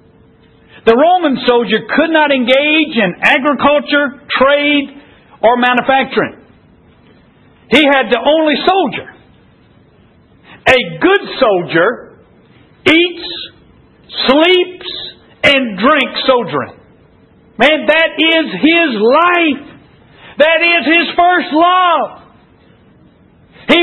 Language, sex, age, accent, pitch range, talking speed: English, male, 60-79, American, 215-300 Hz, 90 wpm